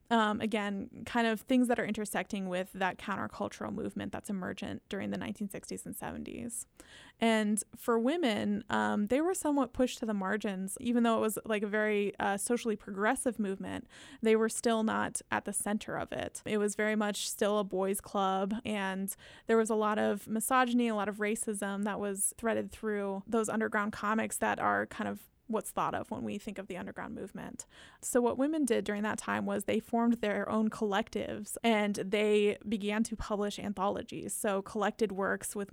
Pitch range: 200-230 Hz